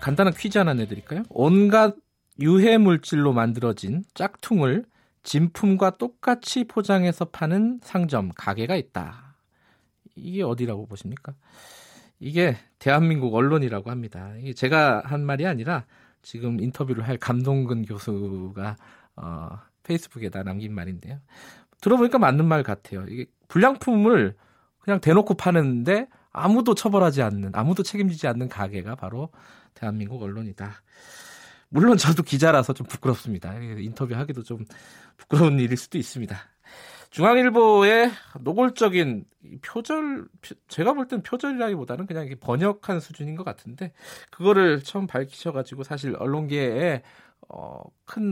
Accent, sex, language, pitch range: native, male, Korean, 115-190 Hz